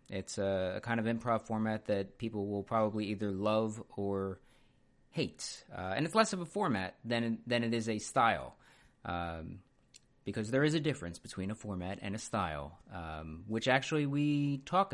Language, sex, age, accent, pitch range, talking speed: English, male, 30-49, American, 95-130 Hz, 175 wpm